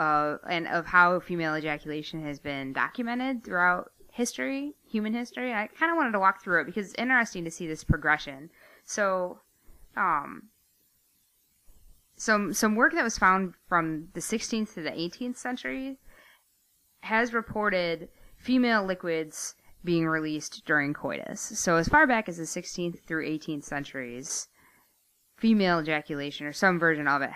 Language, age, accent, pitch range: English, 20-39, American, 150-210 Hz